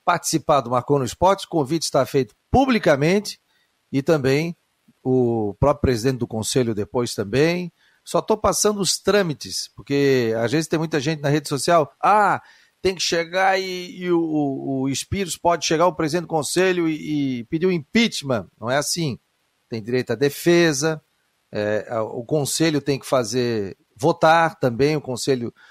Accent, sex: Brazilian, male